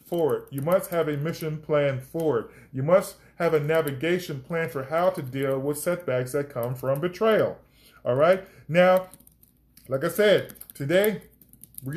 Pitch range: 135-190 Hz